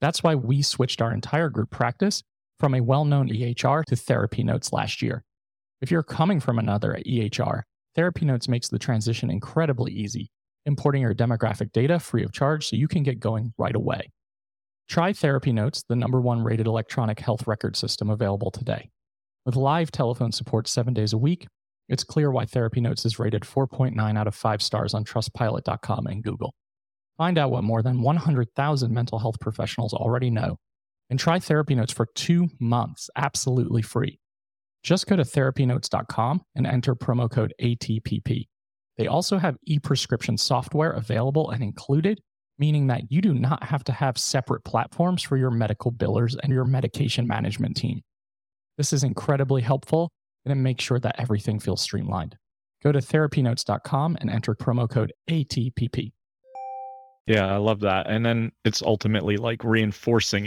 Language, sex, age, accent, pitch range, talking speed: English, male, 30-49, American, 110-140 Hz, 165 wpm